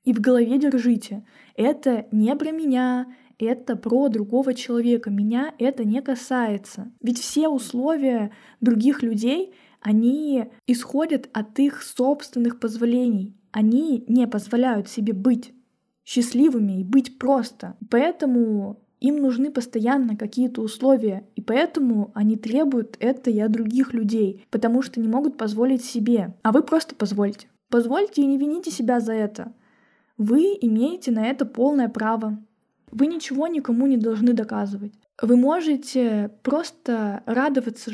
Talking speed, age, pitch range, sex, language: 135 wpm, 10-29, 225-270 Hz, female, Russian